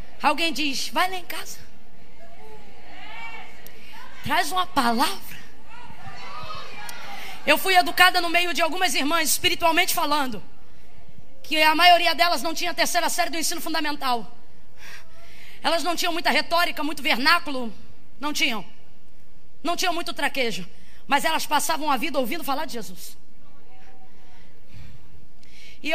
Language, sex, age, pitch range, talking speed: Portuguese, female, 20-39, 290-345 Hz, 125 wpm